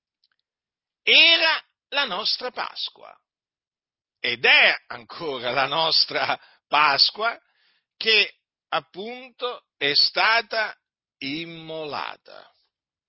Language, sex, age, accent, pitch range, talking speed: Italian, male, 50-69, native, 170-255 Hz, 70 wpm